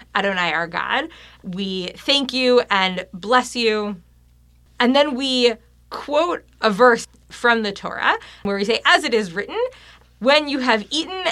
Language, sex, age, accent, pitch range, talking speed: English, female, 20-39, American, 185-245 Hz, 155 wpm